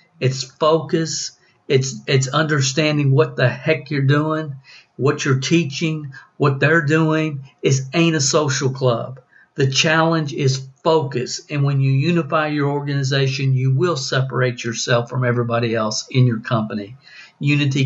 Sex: male